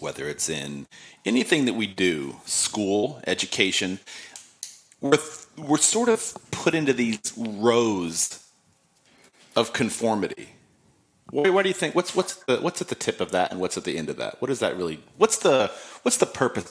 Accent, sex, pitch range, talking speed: American, male, 95-150 Hz, 175 wpm